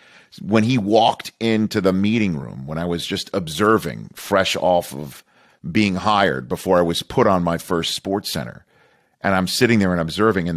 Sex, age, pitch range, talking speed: male, 50-69, 90-115 Hz, 185 wpm